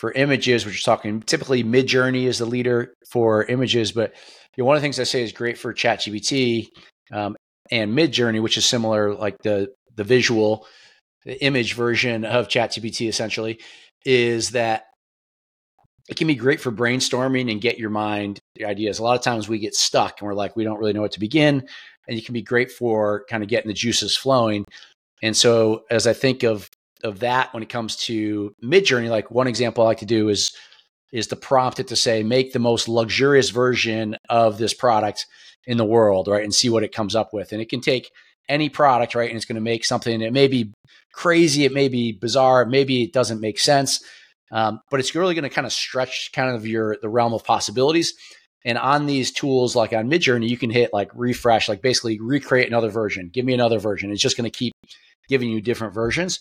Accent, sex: American, male